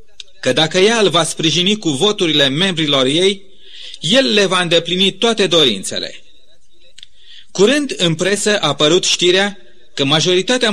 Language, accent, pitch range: Romanian, native, 155-210 Hz